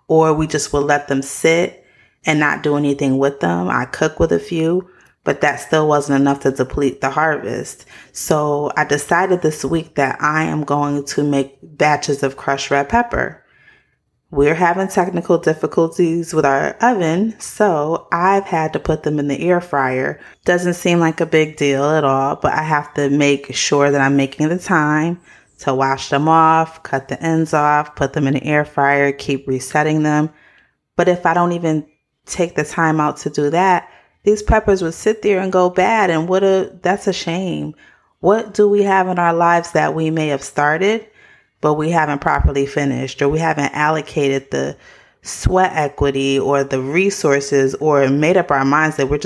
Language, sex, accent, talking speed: English, female, American, 190 wpm